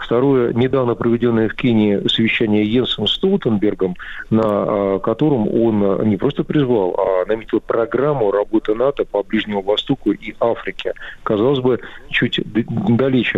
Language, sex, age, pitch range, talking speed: Russian, male, 50-69, 100-120 Hz, 135 wpm